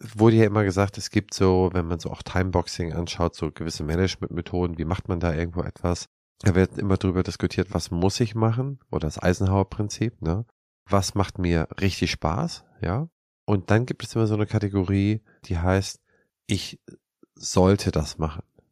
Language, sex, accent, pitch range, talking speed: German, male, German, 85-105 Hz, 175 wpm